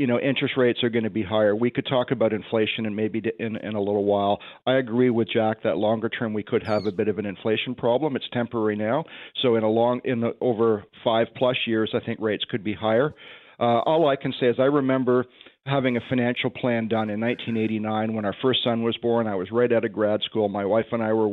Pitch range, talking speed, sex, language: 110-125 Hz, 250 wpm, male, English